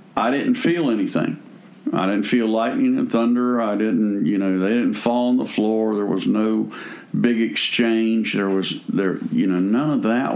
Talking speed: 190 wpm